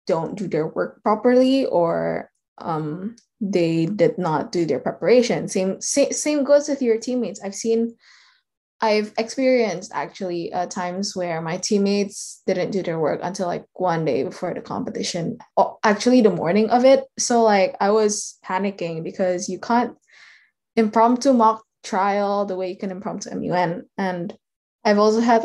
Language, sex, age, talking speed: English, female, 10-29, 155 wpm